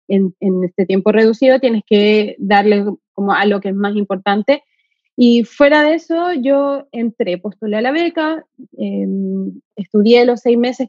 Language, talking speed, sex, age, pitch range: Spanish, 165 wpm, female, 20-39, 215-275 Hz